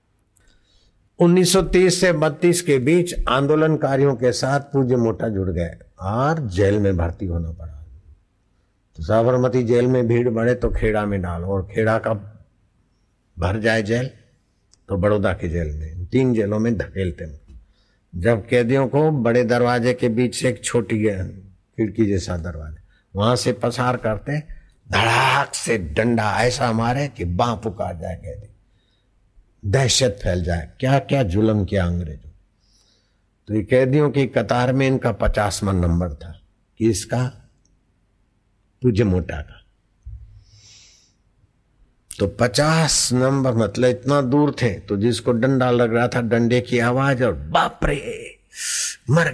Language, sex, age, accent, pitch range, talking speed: Hindi, male, 60-79, native, 100-125 Hz, 130 wpm